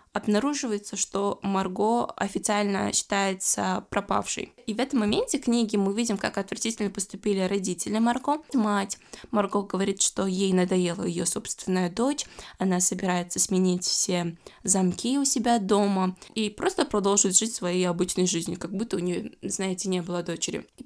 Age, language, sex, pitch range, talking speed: 20-39, Russian, female, 190-230 Hz, 145 wpm